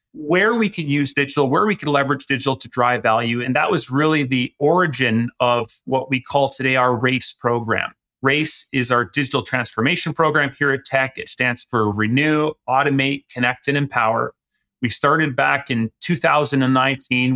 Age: 30-49